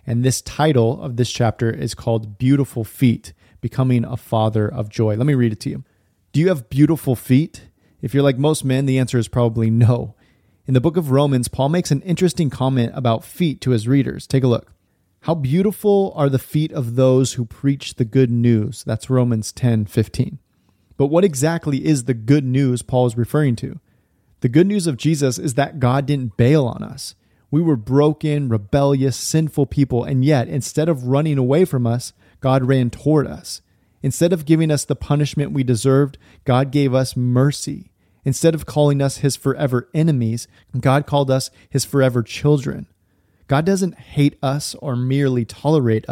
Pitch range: 120-145 Hz